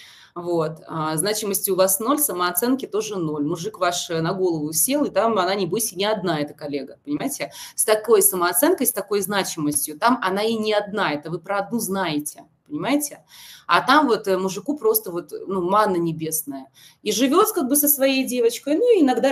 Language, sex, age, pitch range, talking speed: Russian, female, 20-39, 160-245 Hz, 180 wpm